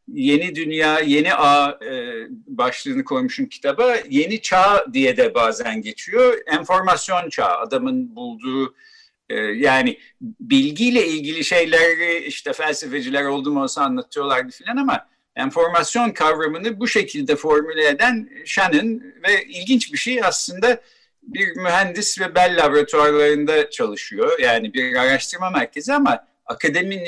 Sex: male